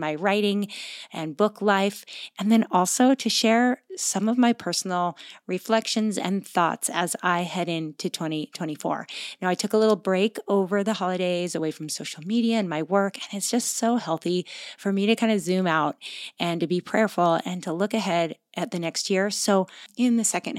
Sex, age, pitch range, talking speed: female, 30-49, 180-225 Hz, 190 wpm